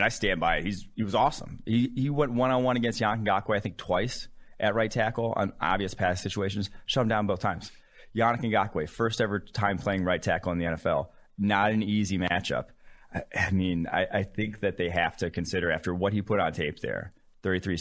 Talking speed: 210 wpm